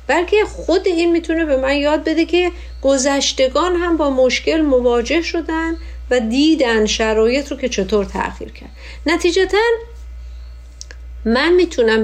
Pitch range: 220-270 Hz